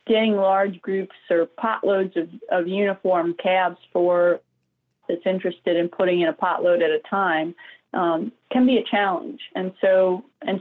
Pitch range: 170-200 Hz